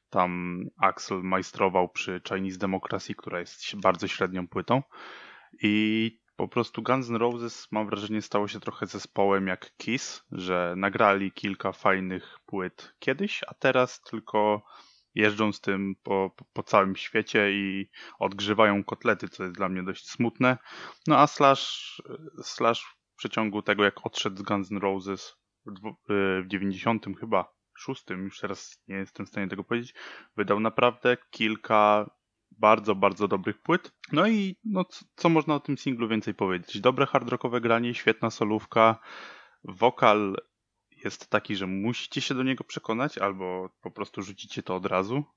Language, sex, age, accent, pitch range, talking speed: Polish, male, 20-39, native, 95-115 Hz, 150 wpm